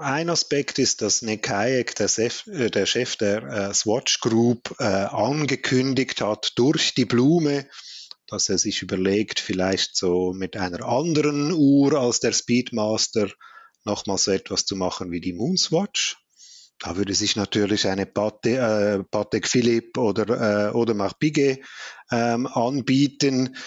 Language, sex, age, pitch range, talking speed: German, male, 30-49, 105-135 Hz, 130 wpm